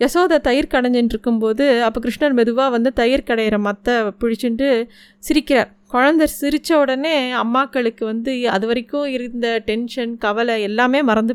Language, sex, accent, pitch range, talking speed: Tamil, female, native, 220-270 Hz, 130 wpm